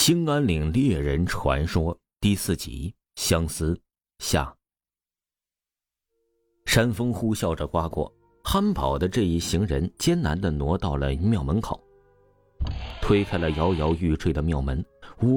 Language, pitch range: Chinese, 80-110 Hz